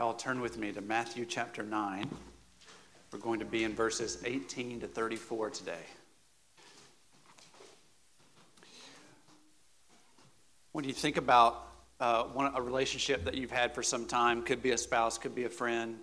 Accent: American